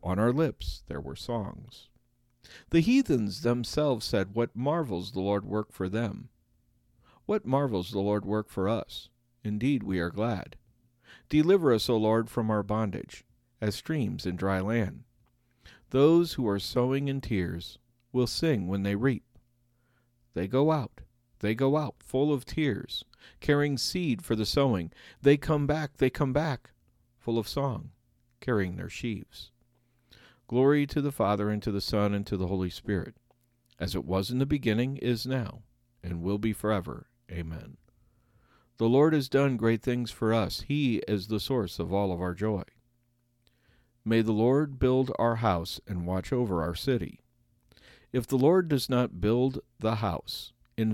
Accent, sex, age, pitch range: American, male, 50-69, 100-130 Hz